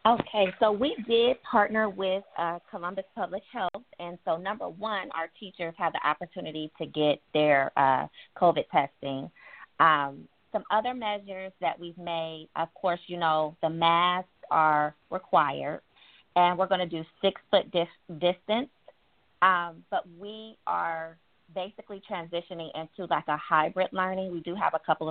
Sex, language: female, English